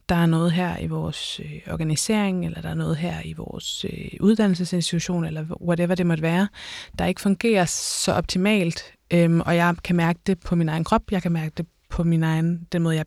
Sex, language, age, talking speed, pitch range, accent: female, Danish, 20-39, 200 wpm, 165-190 Hz, native